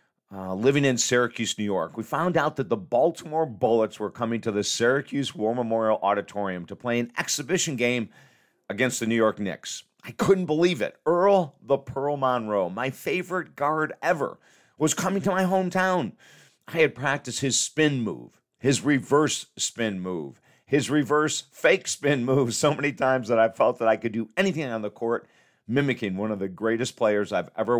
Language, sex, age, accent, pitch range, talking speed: English, male, 50-69, American, 105-145 Hz, 185 wpm